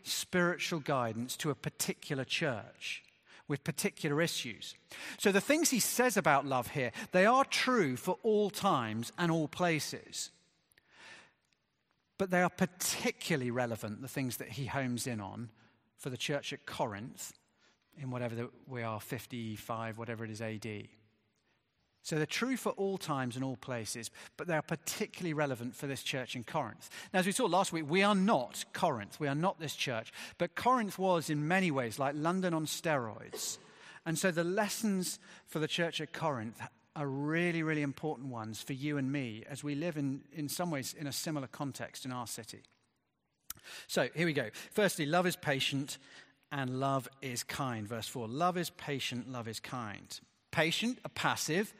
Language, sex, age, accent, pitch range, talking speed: English, male, 40-59, British, 125-175 Hz, 175 wpm